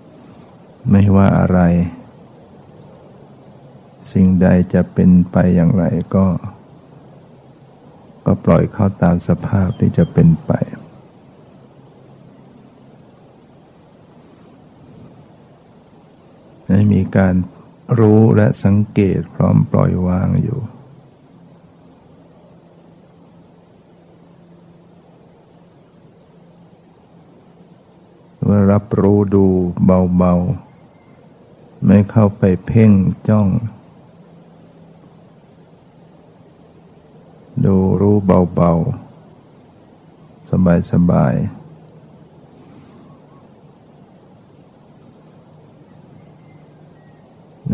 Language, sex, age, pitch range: Thai, male, 60-79, 90-110 Hz